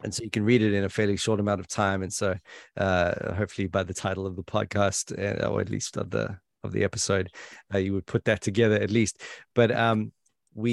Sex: male